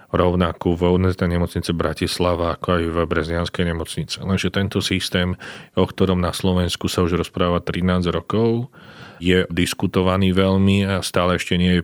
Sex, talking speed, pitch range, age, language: male, 145 wpm, 85-95 Hz, 40-59, Slovak